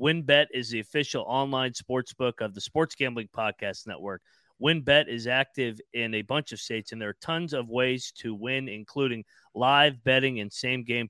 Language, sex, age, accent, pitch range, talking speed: English, male, 30-49, American, 115-140 Hz, 180 wpm